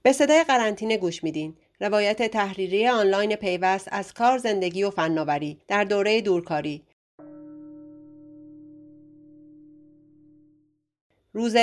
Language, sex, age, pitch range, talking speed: Persian, female, 40-59, 170-225 Hz, 95 wpm